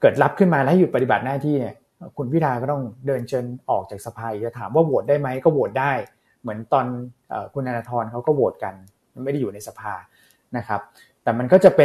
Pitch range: 120-150 Hz